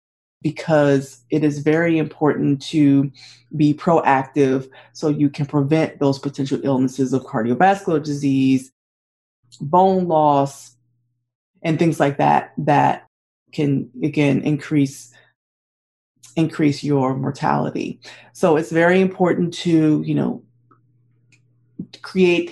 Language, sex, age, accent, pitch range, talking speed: English, female, 30-49, American, 135-160 Hz, 105 wpm